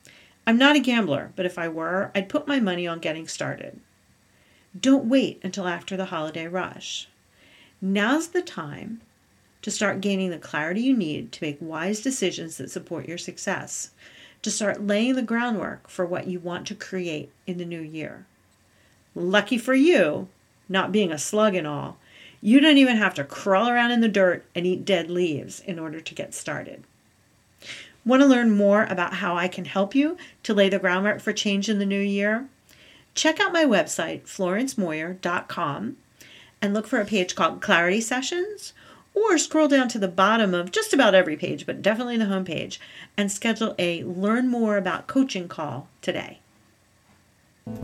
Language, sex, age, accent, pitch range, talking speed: English, female, 50-69, American, 170-225 Hz, 175 wpm